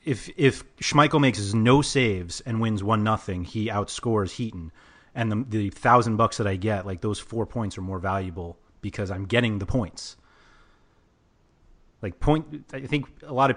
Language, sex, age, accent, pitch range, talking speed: English, male, 30-49, American, 95-120 Hz, 175 wpm